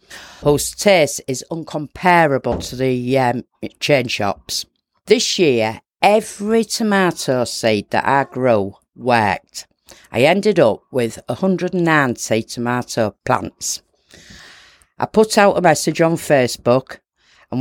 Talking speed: 110 wpm